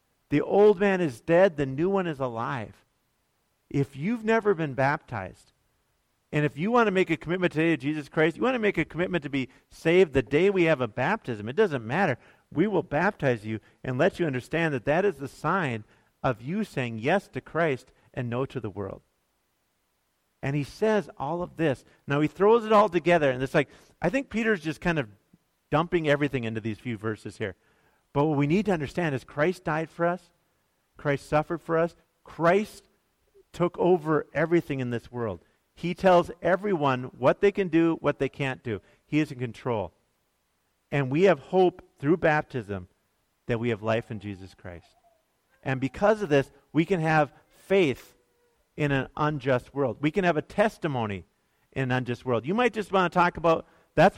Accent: American